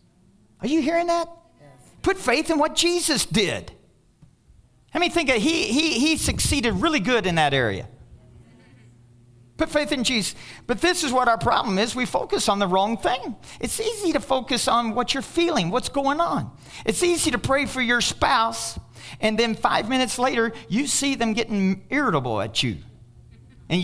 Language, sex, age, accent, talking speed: English, male, 40-59, American, 175 wpm